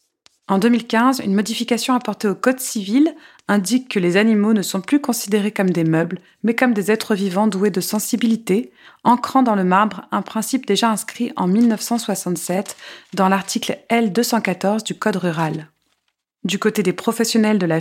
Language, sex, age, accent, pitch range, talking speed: French, female, 30-49, French, 180-230 Hz, 165 wpm